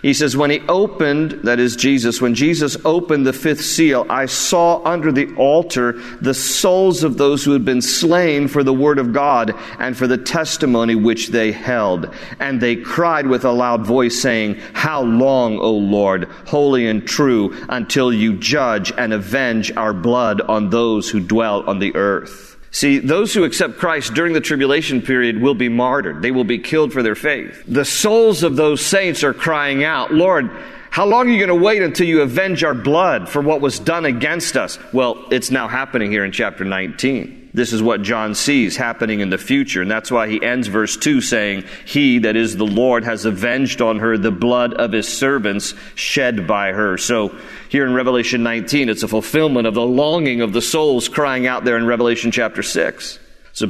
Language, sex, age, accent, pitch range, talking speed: English, male, 50-69, American, 115-145 Hz, 200 wpm